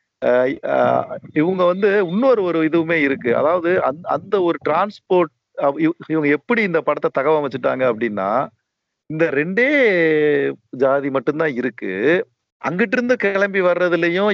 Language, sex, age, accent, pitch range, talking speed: Tamil, male, 50-69, native, 135-170 Hz, 110 wpm